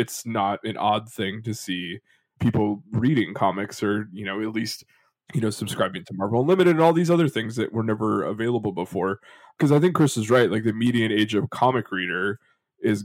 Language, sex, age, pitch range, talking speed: English, male, 20-39, 105-130 Hz, 210 wpm